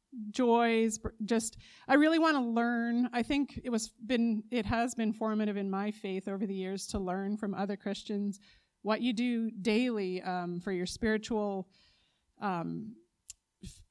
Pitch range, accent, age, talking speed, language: 200-240 Hz, American, 30-49, 160 wpm, English